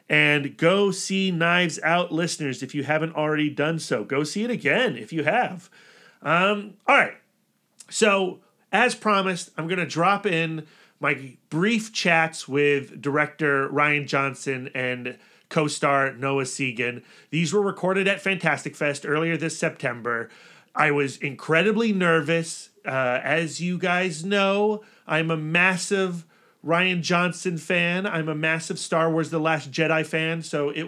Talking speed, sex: 150 wpm, male